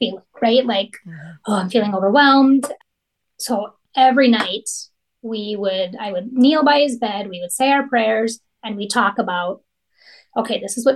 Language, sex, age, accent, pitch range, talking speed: English, female, 30-49, American, 215-265 Hz, 165 wpm